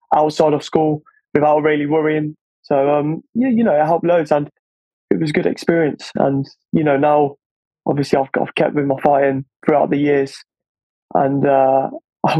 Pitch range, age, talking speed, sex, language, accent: 145-165 Hz, 20-39, 180 wpm, male, English, British